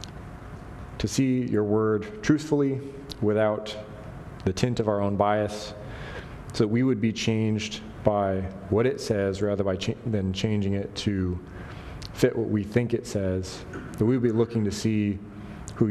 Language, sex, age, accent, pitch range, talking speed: English, male, 30-49, American, 95-115 Hz, 155 wpm